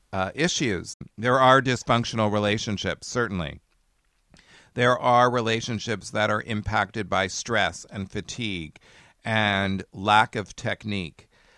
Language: English